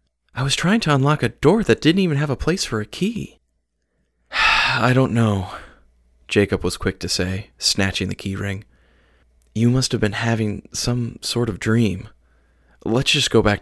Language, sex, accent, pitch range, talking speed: English, male, American, 80-110 Hz, 180 wpm